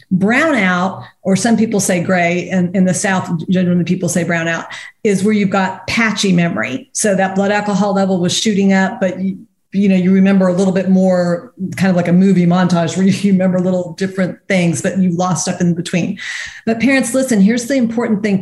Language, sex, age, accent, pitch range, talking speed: English, female, 50-69, American, 185-220 Hz, 210 wpm